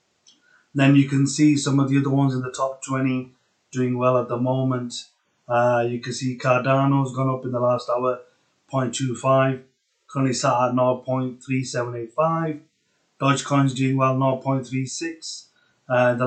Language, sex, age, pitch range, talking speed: English, male, 30-49, 125-140 Hz, 150 wpm